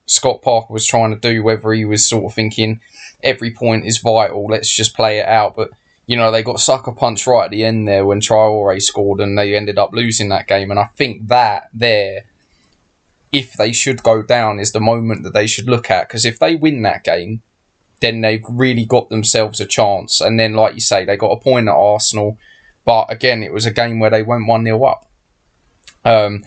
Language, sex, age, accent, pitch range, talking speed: English, male, 20-39, British, 105-120 Hz, 225 wpm